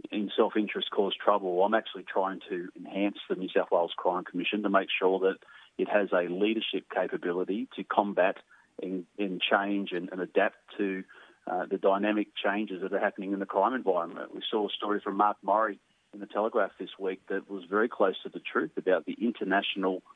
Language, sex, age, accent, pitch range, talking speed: English, male, 30-49, Australian, 95-105 Hz, 195 wpm